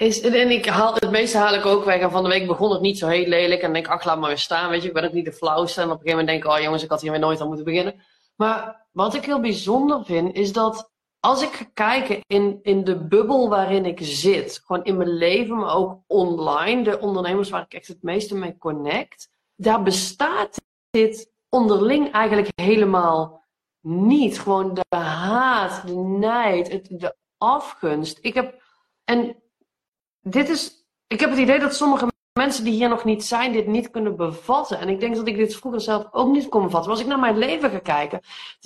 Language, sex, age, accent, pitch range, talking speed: Dutch, female, 30-49, Dutch, 180-235 Hz, 225 wpm